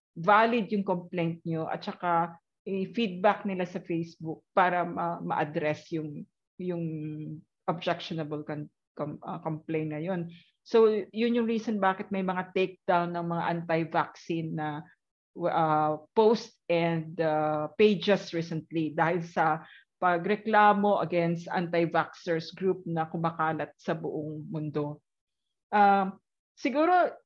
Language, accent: Filipino, native